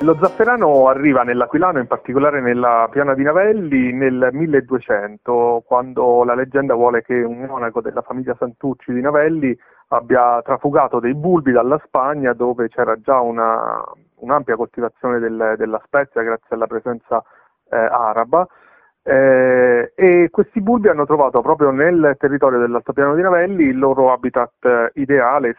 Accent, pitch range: native, 115-140 Hz